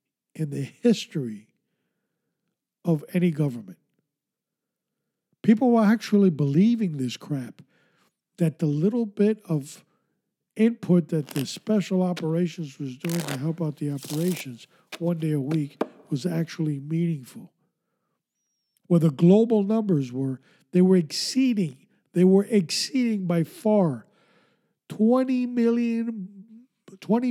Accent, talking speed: American, 110 wpm